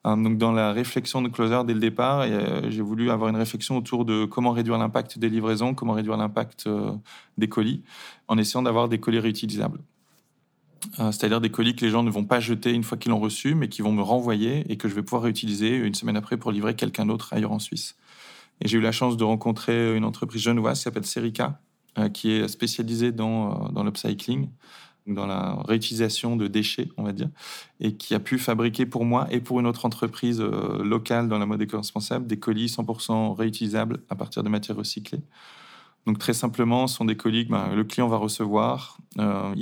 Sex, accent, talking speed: male, French, 205 wpm